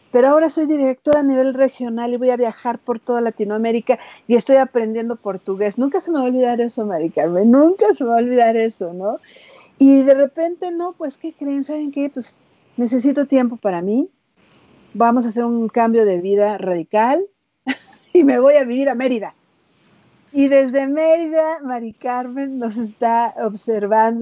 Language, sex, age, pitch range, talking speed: Spanish, female, 50-69, 210-260 Hz, 175 wpm